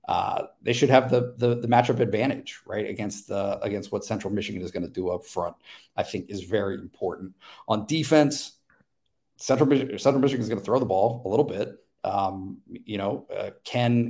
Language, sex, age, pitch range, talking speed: English, male, 50-69, 110-130 Hz, 195 wpm